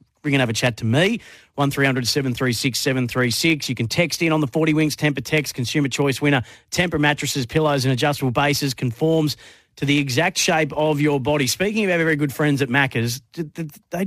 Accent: Australian